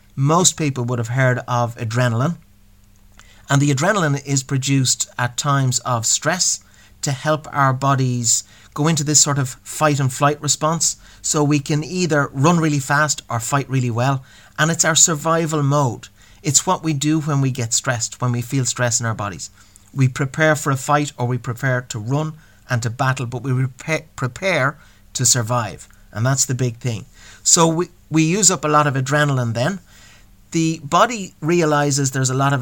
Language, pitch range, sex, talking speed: English, 120-150 Hz, male, 185 wpm